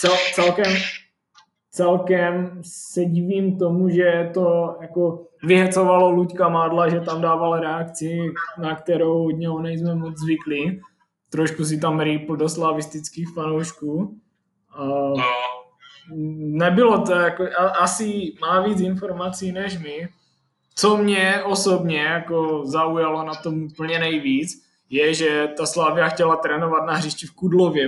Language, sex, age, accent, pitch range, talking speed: English, male, 20-39, Czech, 155-175 Hz, 125 wpm